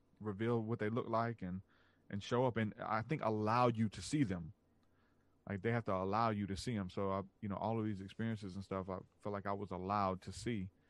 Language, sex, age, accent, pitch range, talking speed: English, male, 30-49, American, 95-110 Hz, 235 wpm